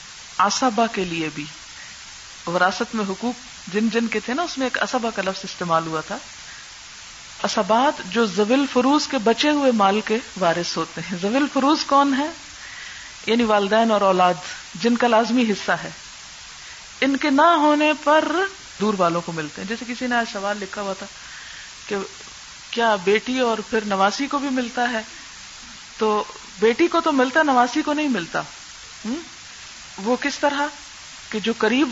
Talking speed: 165 wpm